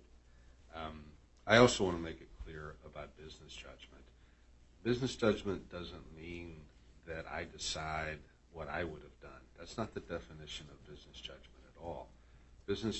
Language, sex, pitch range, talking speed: English, male, 70-90 Hz, 150 wpm